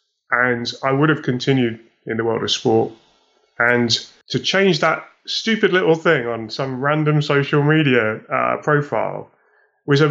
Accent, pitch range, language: British, 125-155 Hz, English